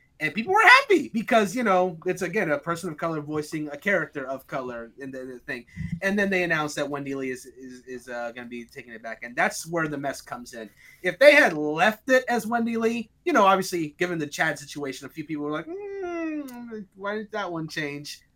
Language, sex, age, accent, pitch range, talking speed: English, male, 30-49, American, 145-200 Hz, 230 wpm